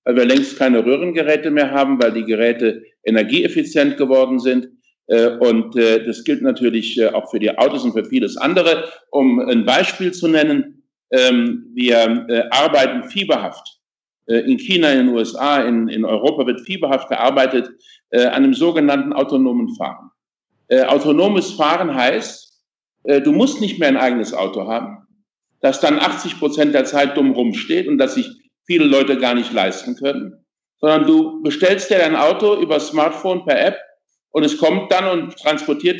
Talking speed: 155 wpm